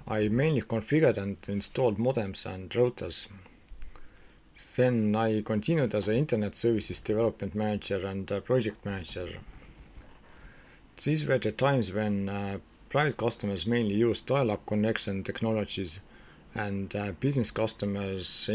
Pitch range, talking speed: 100-120 Hz, 120 wpm